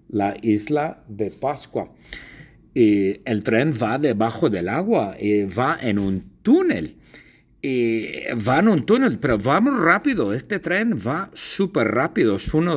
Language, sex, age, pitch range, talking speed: English, male, 60-79, 95-145 Hz, 145 wpm